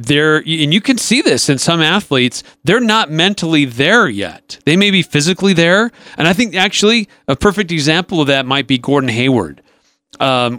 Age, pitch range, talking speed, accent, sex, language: 40-59, 130-175 Hz, 185 wpm, American, male, English